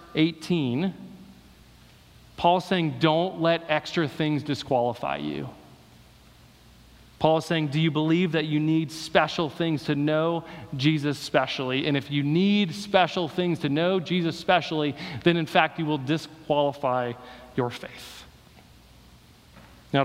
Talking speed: 130 wpm